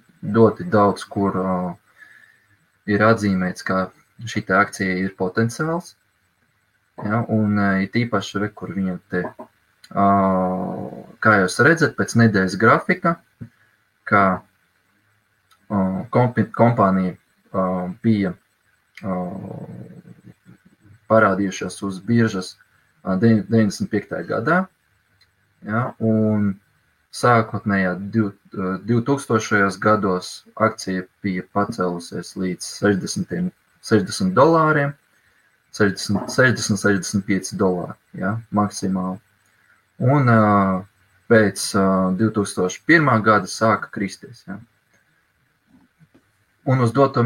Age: 20-39